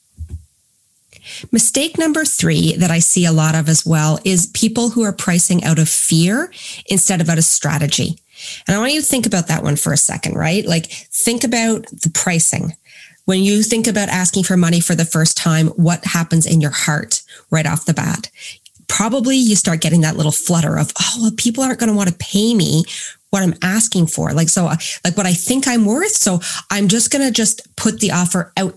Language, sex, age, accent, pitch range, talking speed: English, female, 30-49, American, 160-210 Hz, 210 wpm